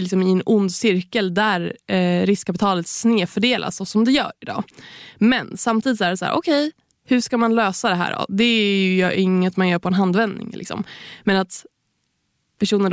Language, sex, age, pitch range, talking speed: Swedish, female, 20-39, 185-225 Hz, 190 wpm